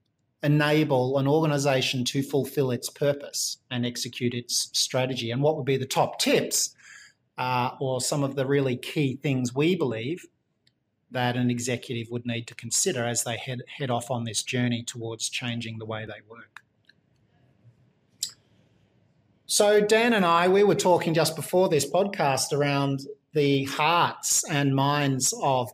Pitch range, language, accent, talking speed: 130-155 Hz, English, Australian, 155 wpm